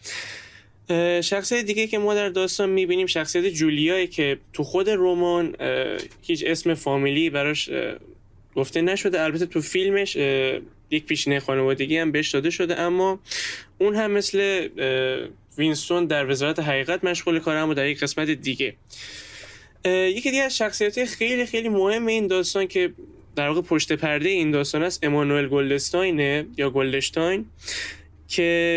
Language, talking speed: Persian, 140 wpm